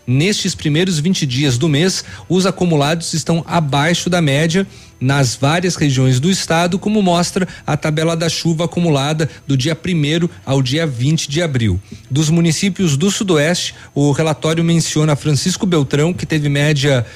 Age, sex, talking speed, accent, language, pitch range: 40-59, male, 155 wpm, Brazilian, Portuguese, 140-175 Hz